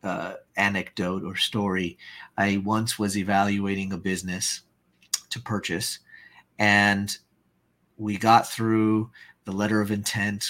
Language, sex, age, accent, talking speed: English, male, 40-59, American, 115 wpm